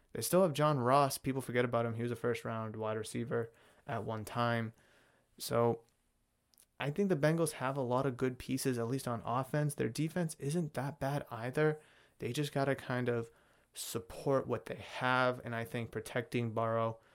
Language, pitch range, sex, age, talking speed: English, 115-130 Hz, male, 20-39, 190 wpm